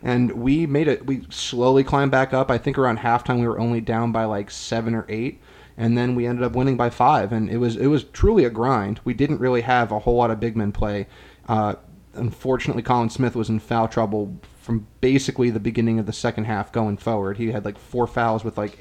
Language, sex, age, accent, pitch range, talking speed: English, male, 30-49, American, 110-125 Hz, 240 wpm